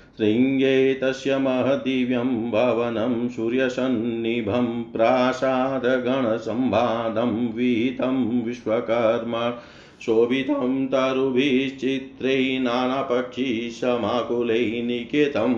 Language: Hindi